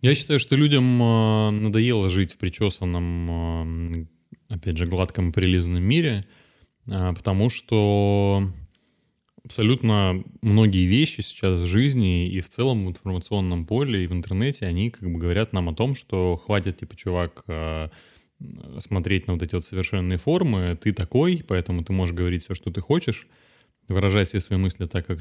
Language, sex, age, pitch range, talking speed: Russian, male, 20-39, 90-115 Hz, 150 wpm